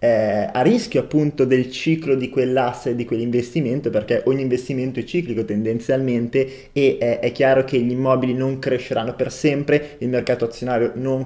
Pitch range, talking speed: 125-150 Hz, 165 wpm